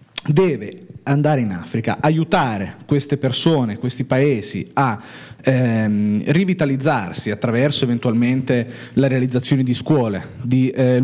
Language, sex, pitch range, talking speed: Italian, male, 120-145 Hz, 110 wpm